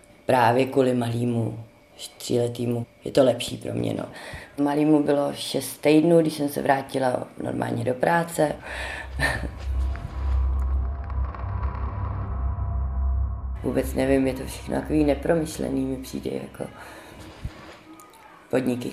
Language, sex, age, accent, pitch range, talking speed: Czech, female, 30-49, native, 120-140 Hz, 100 wpm